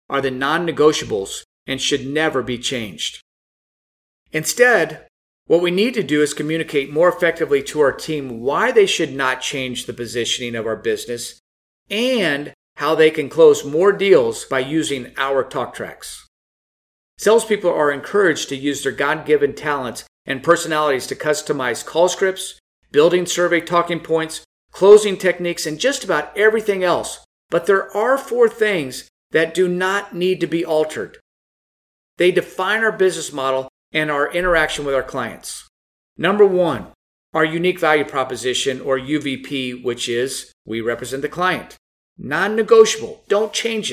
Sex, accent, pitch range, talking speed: male, American, 135-195 Hz, 150 wpm